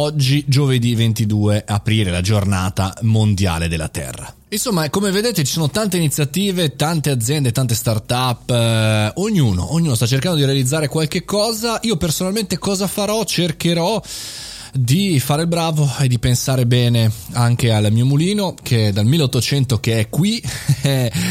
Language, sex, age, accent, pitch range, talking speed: Italian, male, 20-39, native, 110-165 Hz, 145 wpm